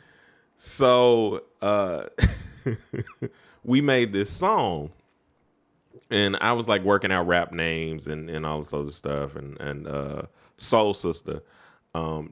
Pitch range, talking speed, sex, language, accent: 75-105 Hz, 125 wpm, male, English, American